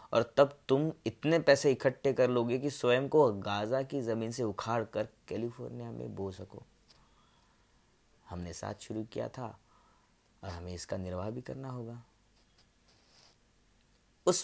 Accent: native